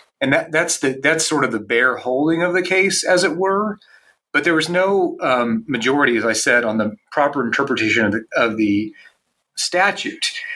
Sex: male